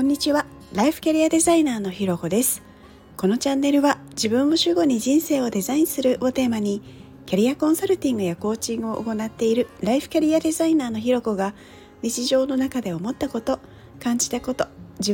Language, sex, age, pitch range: Japanese, female, 40-59, 195-270 Hz